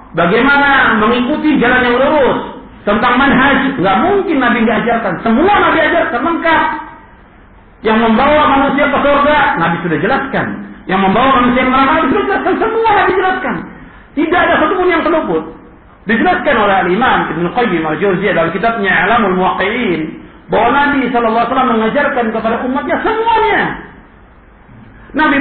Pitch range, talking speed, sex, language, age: 195-260 Hz, 130 wpm, male, Indonesian, 50-69